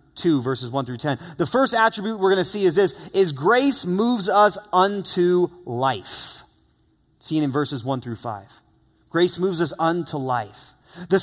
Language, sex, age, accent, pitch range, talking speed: English, male, 30-49, American, 150-200 Hz, 170 wpm